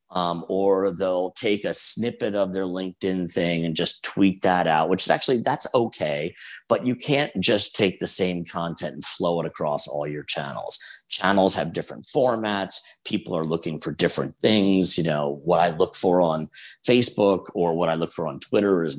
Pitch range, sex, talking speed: 80-95 Hz, male, 195 wpm